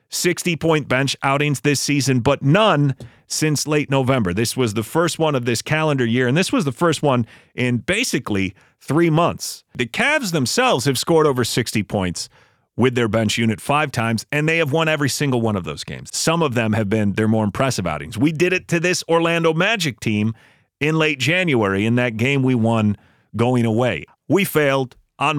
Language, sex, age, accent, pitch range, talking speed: English, male, 40-59, American, 110-145 Hz, 195 wpm